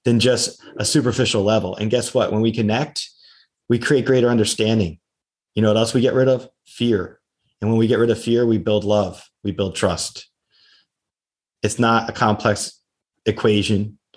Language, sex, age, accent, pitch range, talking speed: English, male, 30-49, American, 100-130 Hz, 180 wpm